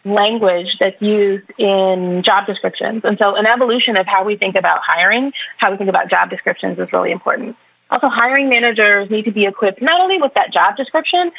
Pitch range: 190-220 Hz